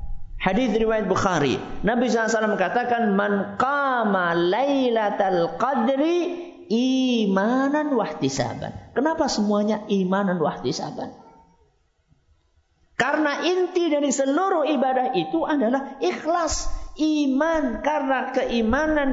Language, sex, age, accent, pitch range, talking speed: Italian, male, 50-69, Indonesian, 205-285 Hz, 95 wpm